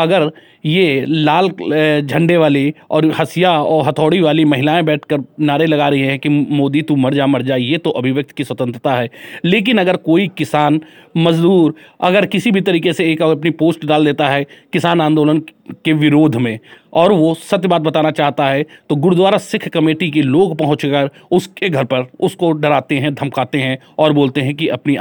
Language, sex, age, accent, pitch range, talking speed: Hindi, male, 30-49, native, 145-175 Hz, 190 wpm